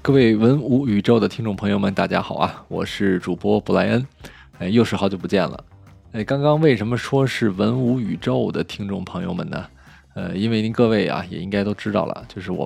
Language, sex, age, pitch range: Chinese, male, 20-39, 95-120 Hz